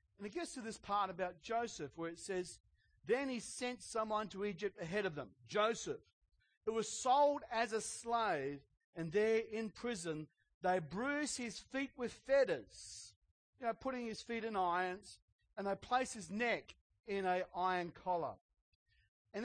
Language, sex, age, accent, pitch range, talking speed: English, male, 40-59, Australian, 180-245 Hz, 160 wpm